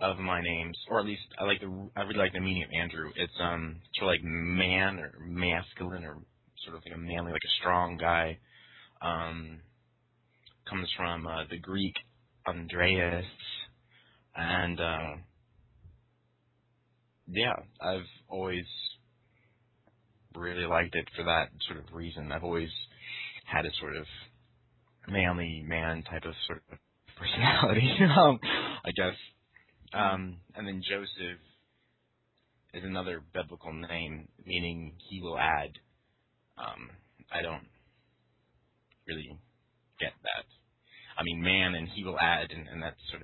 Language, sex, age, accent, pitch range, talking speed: English, male, 20-39, American, 85-110 Hz, 135 wpm